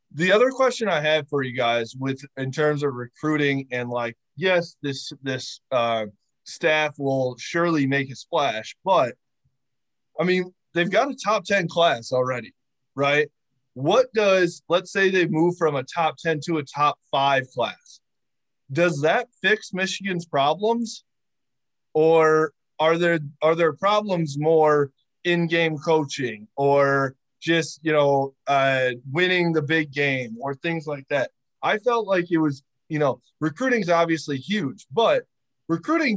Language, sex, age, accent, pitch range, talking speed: English, male, 20-39, American, 135-170 Hz, 150 wpm